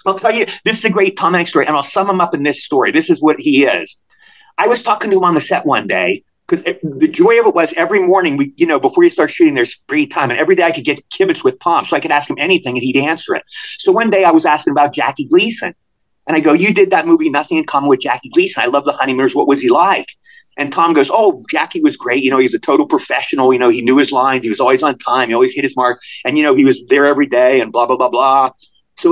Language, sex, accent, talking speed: English, male, American, 295 wpm